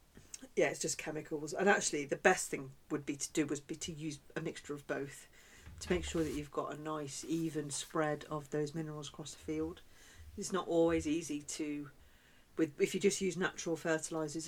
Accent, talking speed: British, 205 wpm